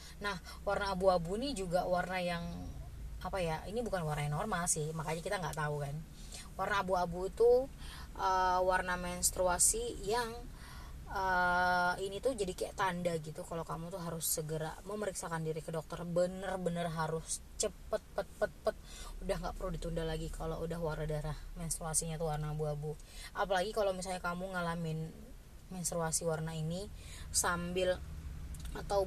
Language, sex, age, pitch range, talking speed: Indonesian, female, 20-39, 155-185 Hz, 150 wpm